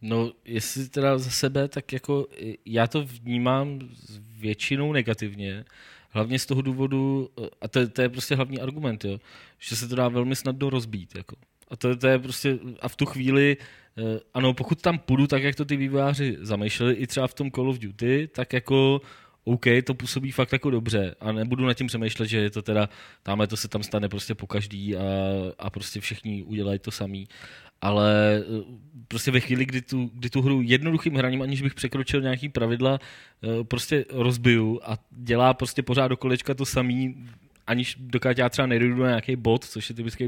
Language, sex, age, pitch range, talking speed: Czech, male, 20-39, 110-135 Hz, 185 wpm